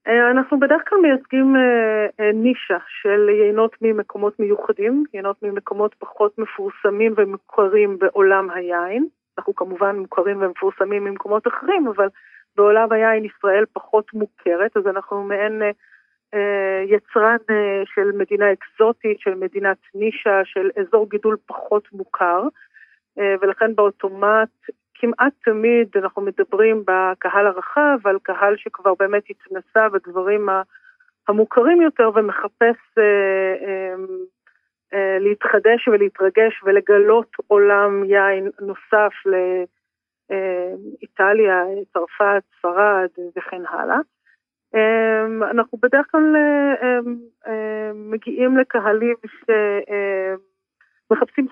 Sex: female